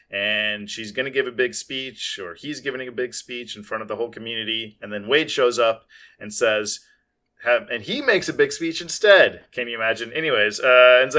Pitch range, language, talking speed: 110-160 Hz, English, 220 wpm